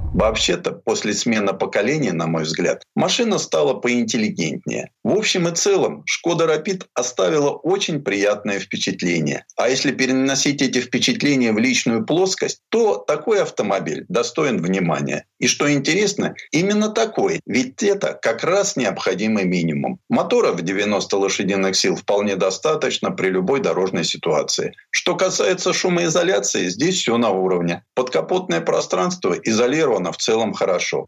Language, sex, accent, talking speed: Russian, male, native, 130 wpm